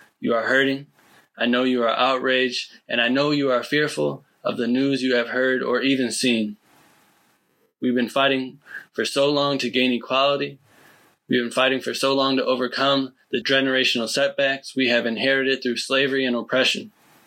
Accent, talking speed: American, 175 wpm